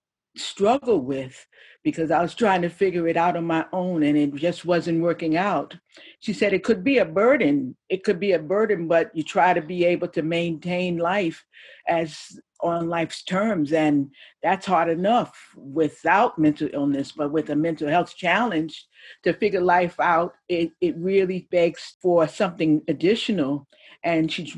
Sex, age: female, 50-69